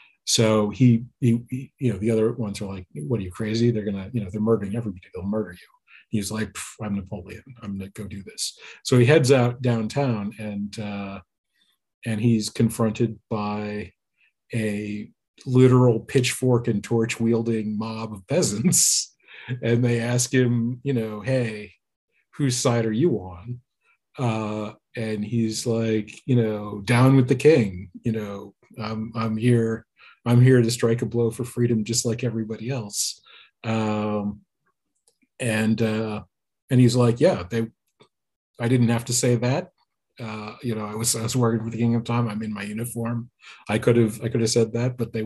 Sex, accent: male, American